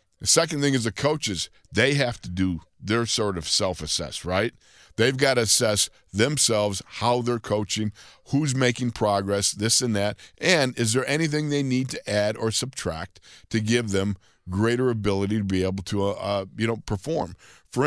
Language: English